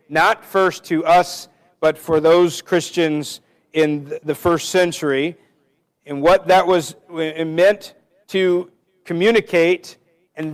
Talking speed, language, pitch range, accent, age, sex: 115 wpm, English, 150-180 Hz, American, 50-69, male